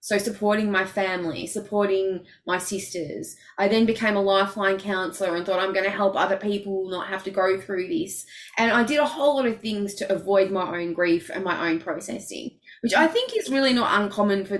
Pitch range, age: 185-210 Hz, 20-39